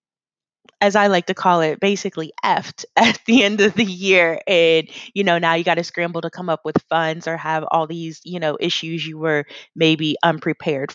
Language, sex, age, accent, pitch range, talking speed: English, female, 20-39, American, 170-215 Hz, 210 wpm